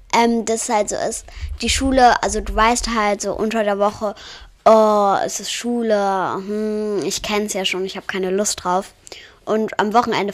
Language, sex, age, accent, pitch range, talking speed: German, female, 20-39, German, 195-235 Hz, 195 wpm